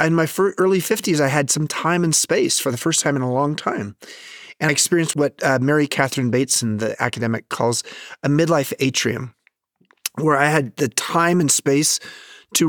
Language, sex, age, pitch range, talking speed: English, male, 30-49, 120-155 Hz, 185 wpm